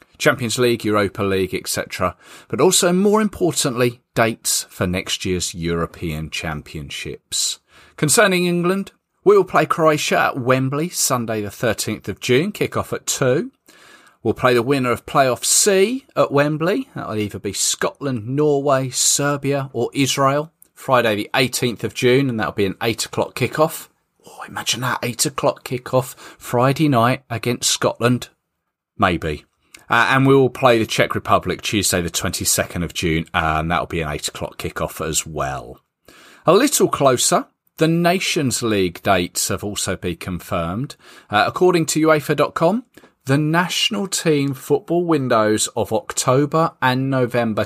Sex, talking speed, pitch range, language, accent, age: male, 150 wpm, 105-150 Hz, English, British, 30-49